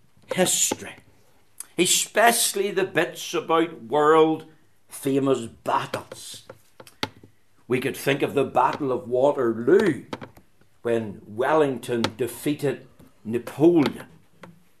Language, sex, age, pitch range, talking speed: English, male, 60-79, 115-185 Hz, 75 wpm